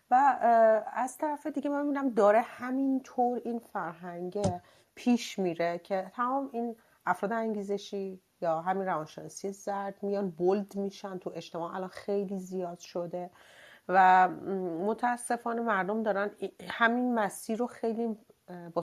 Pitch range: 180-230 Hz